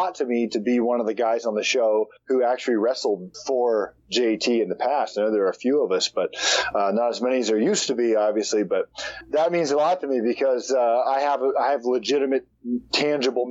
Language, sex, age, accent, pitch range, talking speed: English, male, 40-59, American, 115-155 Hz, 235 wpm